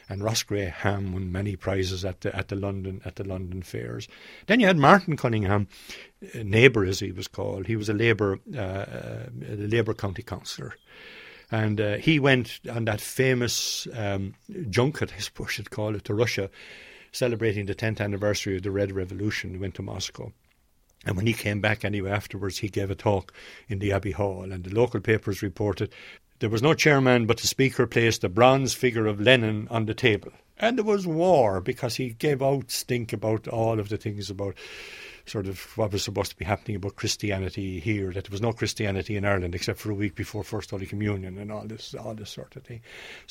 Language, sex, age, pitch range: English, male, 60-79, 100-115 Hz